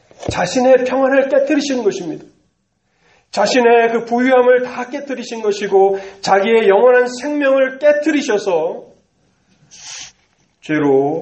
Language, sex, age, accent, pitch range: Korean, male, 30-49, native, 135-210 Hz